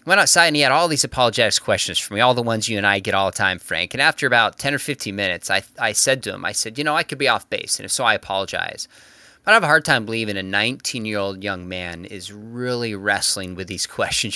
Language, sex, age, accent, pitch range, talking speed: English, male, 20-39, American, 105-150 Hz, 270 wpm